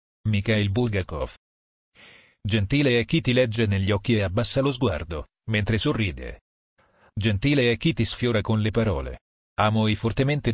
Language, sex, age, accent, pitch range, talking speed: Italian, male, 40-59, native, 95-120 Hz, 150 wpm